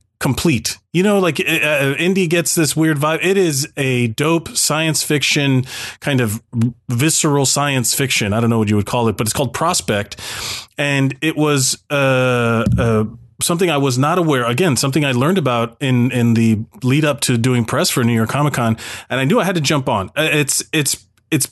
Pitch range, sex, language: 115-150 Hz, male, English